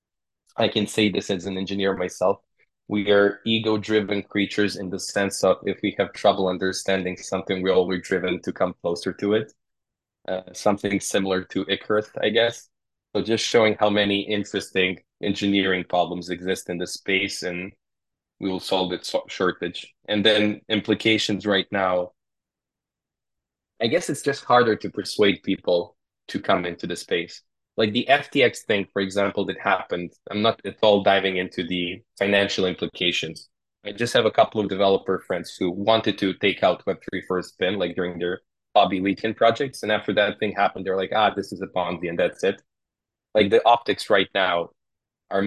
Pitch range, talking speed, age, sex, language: 90-105 Hz, 175 wpm, 20-39, male, English